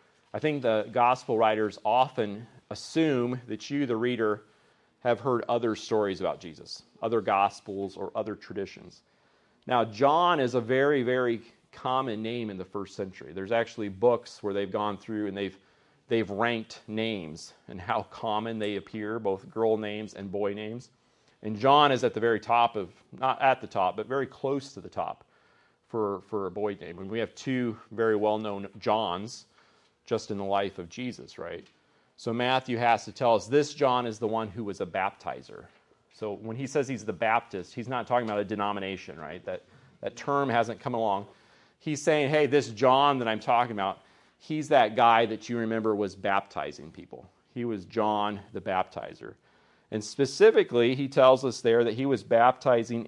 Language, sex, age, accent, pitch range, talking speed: English, male, 40-59, American, 105-130 Hz, 185 wpm